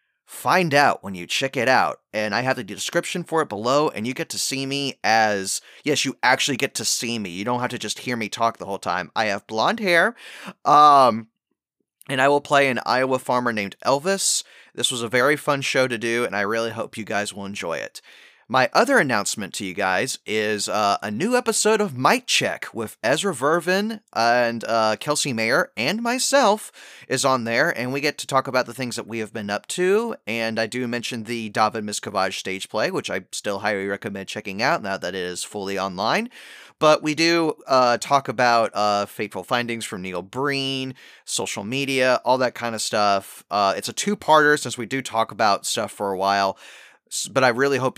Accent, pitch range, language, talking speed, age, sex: American, 110-145 Hz, English, 210 wpm, 20-39, male